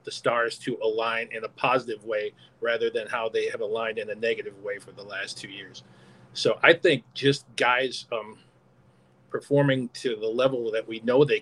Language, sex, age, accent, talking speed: English, male, 40-59, American, 195 wpm